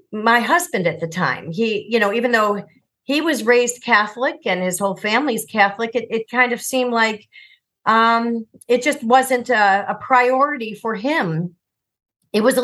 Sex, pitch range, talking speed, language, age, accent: female, 200-265 Hz, 175 wpm, English, 40-59, American